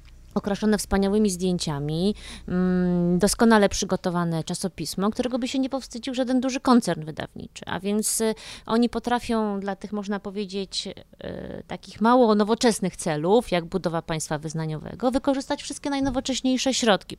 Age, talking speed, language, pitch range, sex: 20-39, 120 wpm, Polish, 195-265 Hz, female